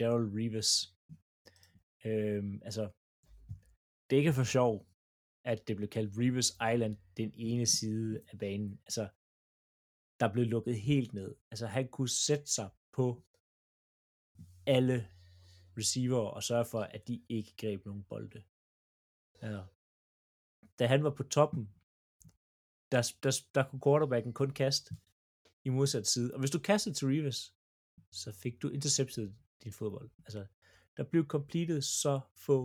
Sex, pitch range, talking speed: male, 100-135 Hz, 140 wpm